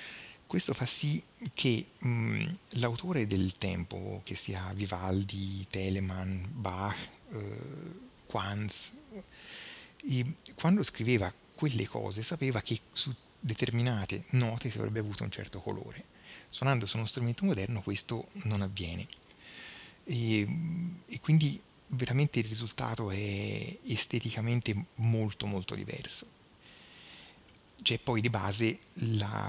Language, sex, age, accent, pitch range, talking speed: Italian, male, 30-49, native, 100-120 Hz, 110 wpm